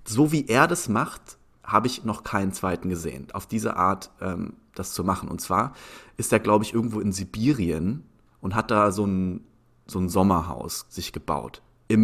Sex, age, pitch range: male, 30-49, 100-120 Hz